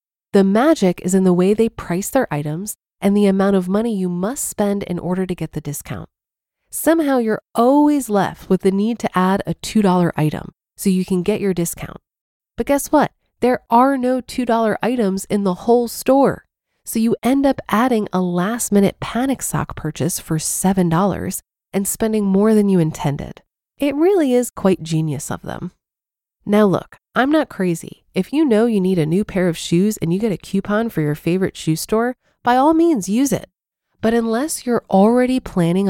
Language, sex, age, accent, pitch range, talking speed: English, female, 30-49, American, 175-230 Hz, 190 wpm